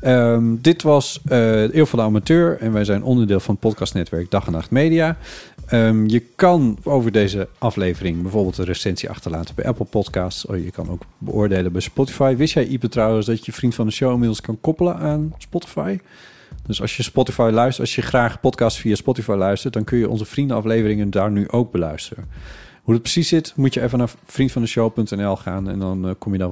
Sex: male